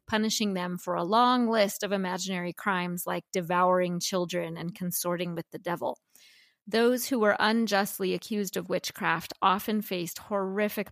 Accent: American